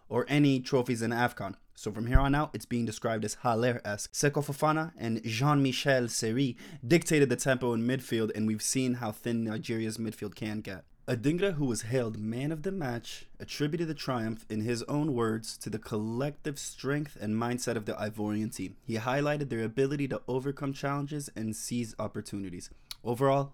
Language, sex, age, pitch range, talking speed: English, male, 20-39, 110-135 Hz, 180 wpm